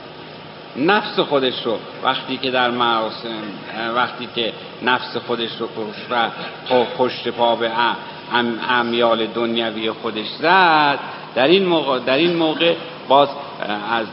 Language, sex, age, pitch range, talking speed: Persian, male, 60-79, 115-150 Hz, 120 wpm